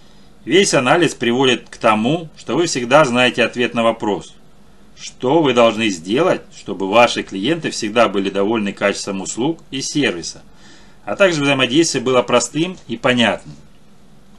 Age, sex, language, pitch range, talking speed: 40-59, male, Russian, 110-140 Hz, 140 wpm